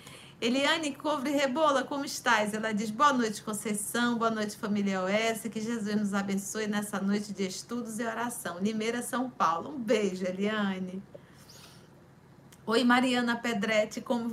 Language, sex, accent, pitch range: Portuguese, female, Brazilian, 200-240 Hz